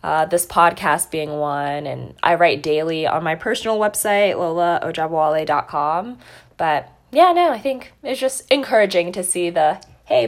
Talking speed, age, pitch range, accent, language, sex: 150 wpm, 20-39, 145-195 Hz, American, English, female